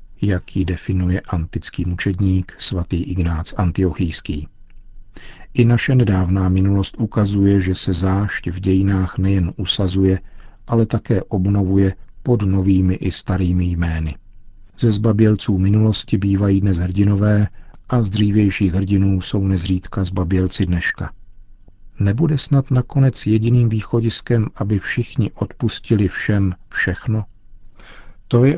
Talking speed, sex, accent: 110 wpm, male, native